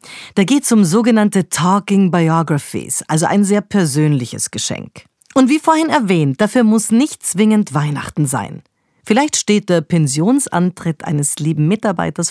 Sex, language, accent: female, German, German